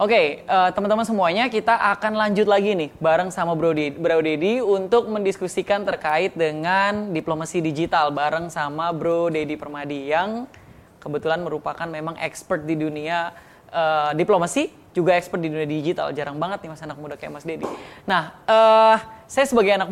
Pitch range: 160-200 Hz